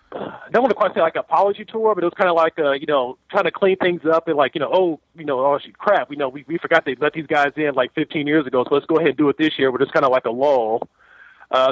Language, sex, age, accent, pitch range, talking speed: English, male, 30-49, American, 140-175 Hz, 340 wpm